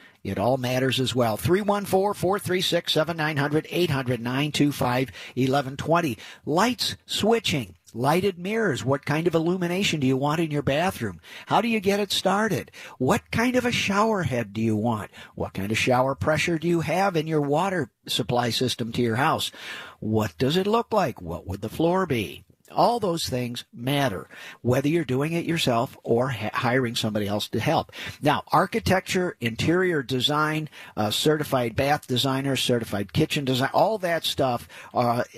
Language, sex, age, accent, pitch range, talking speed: English, male, 50-69, American, 120-165 Hz, 155 wpm